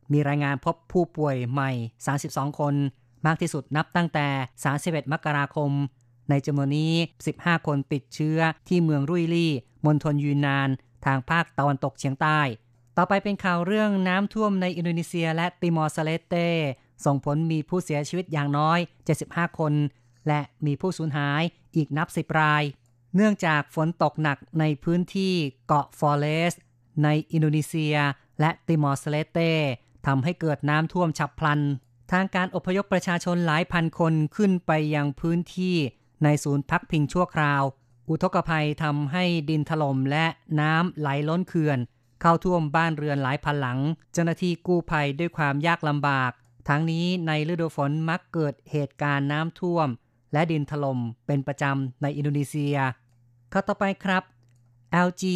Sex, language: female, Thai